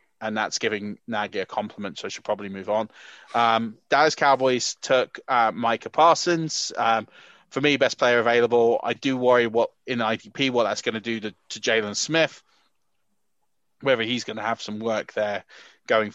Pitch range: 120-165 Hz